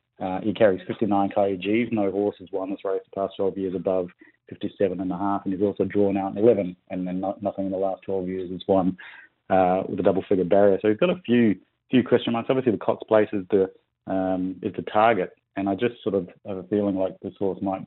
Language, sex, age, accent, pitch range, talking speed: English, male, 30-49, Australian, 95-100 Hz, 250 wpm